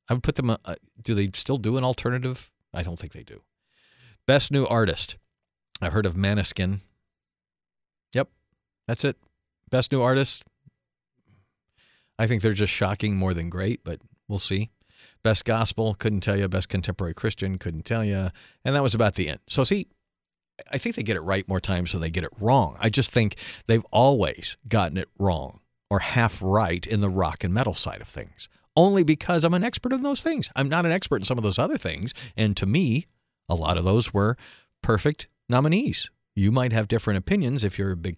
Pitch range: 90-120 Hz